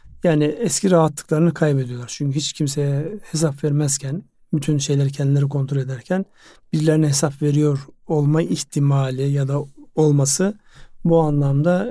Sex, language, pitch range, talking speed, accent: male, Turkish, 140-170 Hz, 120 wpm, native